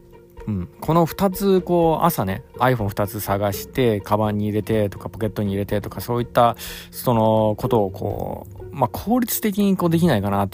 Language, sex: Japanese, male